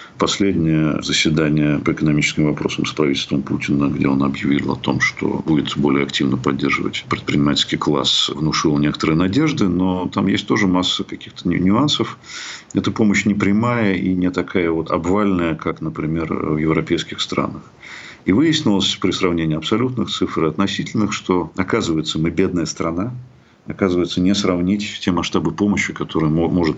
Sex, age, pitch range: male, 50-69, 80-100 Hz